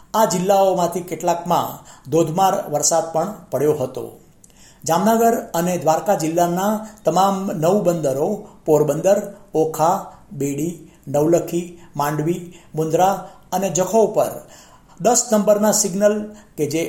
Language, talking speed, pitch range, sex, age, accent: Gujarati, 105 wpm, 160-190 Hz, male, 50-69, native